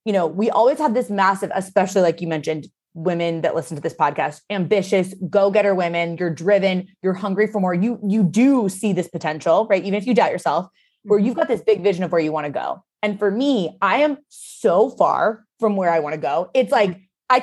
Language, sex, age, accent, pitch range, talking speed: English, female, 20-39, American, 185-255 Hz, 225 wpm